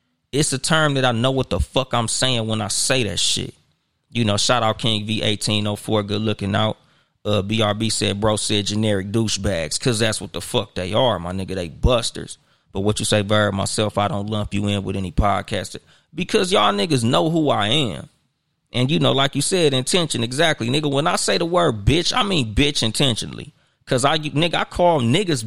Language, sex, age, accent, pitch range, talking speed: English, male, 20-39, American, 105-155 Hz, 205 wpm